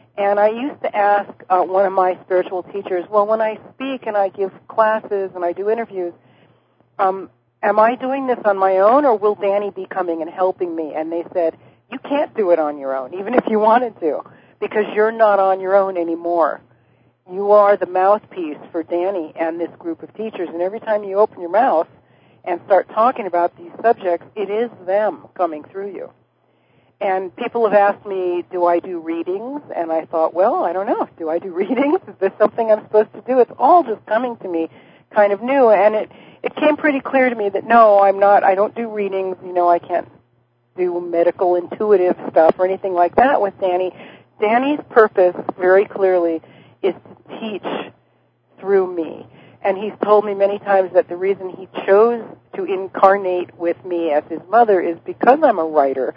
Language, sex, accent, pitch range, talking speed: English, female, American, 175-220 Hz, 200 wpm